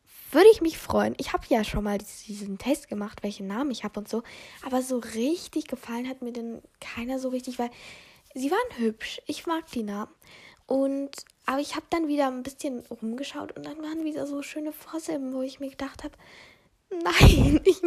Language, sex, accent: German, female, German